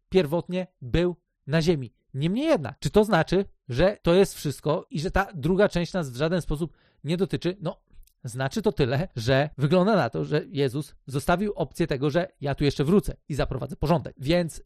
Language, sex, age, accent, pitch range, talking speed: Polish, male, 40-59, native, 155-205 Hz, 190 wpm